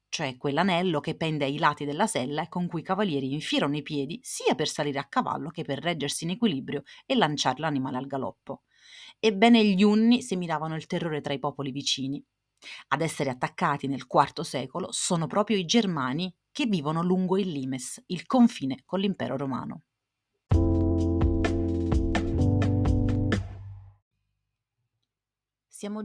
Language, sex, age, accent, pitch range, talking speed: Italian, female, 40-59, native, 130-185 Hz, 145 wpm